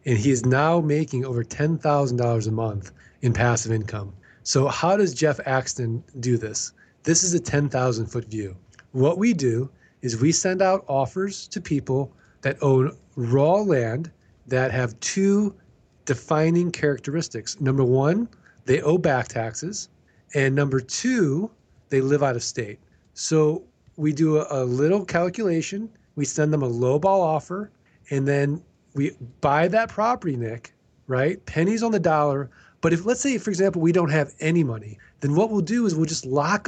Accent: American